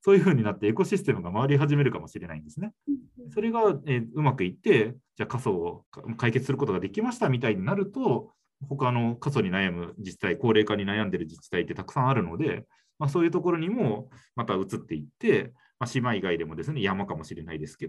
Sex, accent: male, native